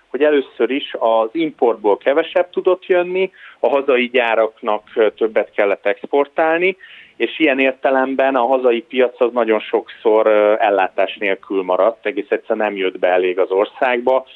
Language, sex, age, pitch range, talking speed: Hungarian, male, 30-49, 105-145 Hz, 140 wpm